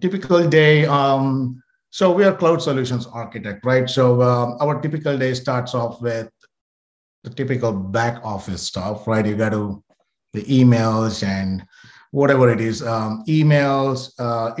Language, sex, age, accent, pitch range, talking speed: English, male, 50-69, Indian, 110-130 Hz, 150 wpm